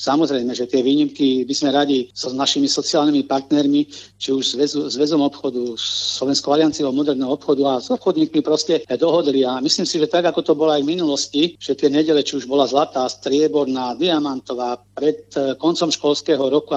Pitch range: 130-150 Hz